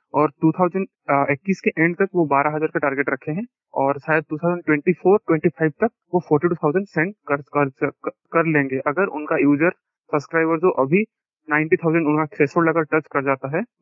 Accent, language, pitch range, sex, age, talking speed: native, Hindi, 150-185 Hz, male, 20-39, 70 wpm